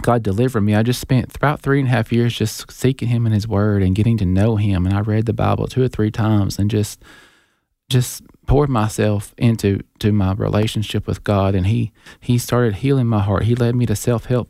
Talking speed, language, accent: 230 wpm, English, American